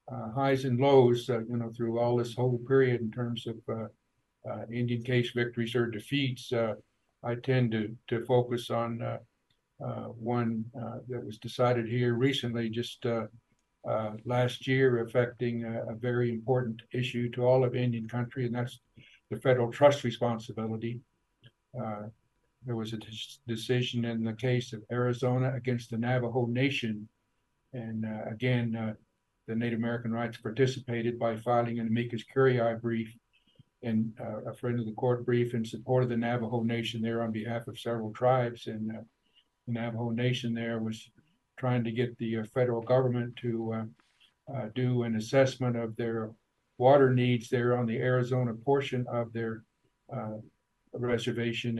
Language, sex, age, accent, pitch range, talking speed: English, male, 60-79, American, 115-125 Hz, 160 wpm